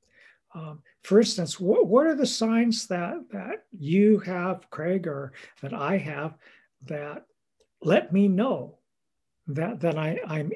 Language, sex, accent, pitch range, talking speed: English, male, American, 155-200 Hz, 135 wpm